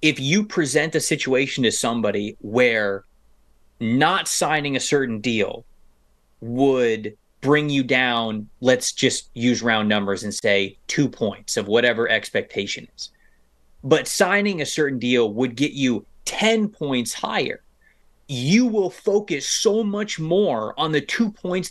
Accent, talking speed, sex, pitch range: American, 140 wpm, male, 120-165 Hz